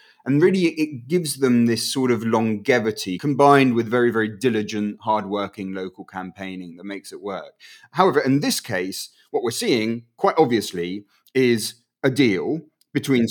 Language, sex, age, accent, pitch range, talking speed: English, male, 30-49, British, 105-135 Hz, 155 wpm